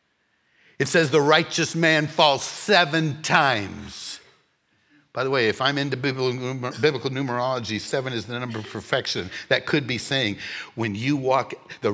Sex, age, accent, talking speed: male, 60-79, American, 150 wpm